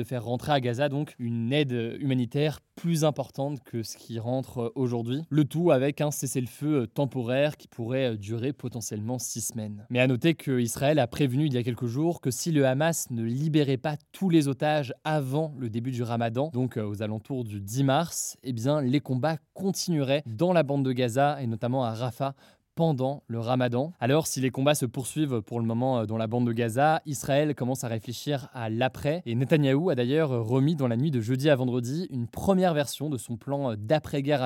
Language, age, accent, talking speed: French, 20-39, French, 200 wpm